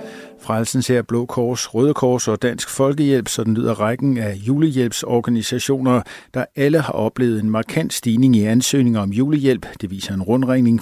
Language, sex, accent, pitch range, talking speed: Danish, male, native, 110-130 Hz, 150 wpm